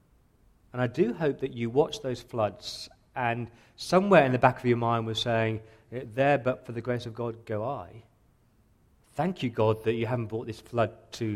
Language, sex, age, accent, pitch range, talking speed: English, male, 40-59, British, 110-125 Hz, 200 wpm